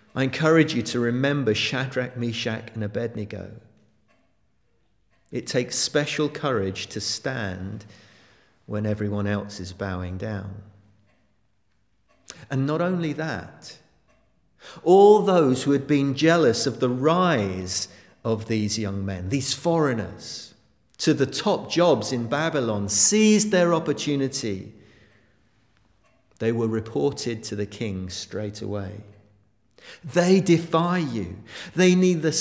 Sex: male